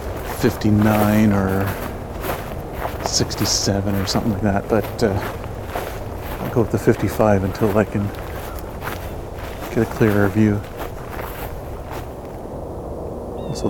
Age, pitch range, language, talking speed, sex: 40-59, 95-120 Hz, English, 95 wpm, male